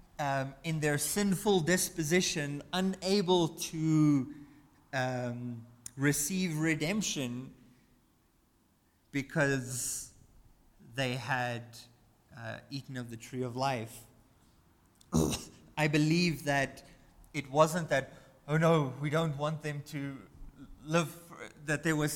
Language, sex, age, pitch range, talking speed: English, male, 30-49, 115-150 Hz, 100 wpm